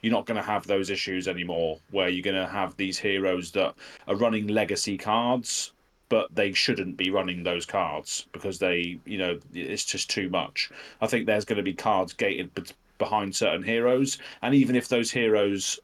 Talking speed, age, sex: 180 wpm, 30-49, male